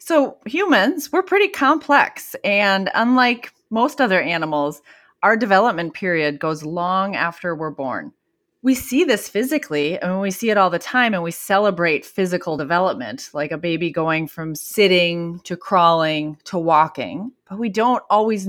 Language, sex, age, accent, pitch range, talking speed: English, female, 30-49, American, 165-240 Hz, 155 wpm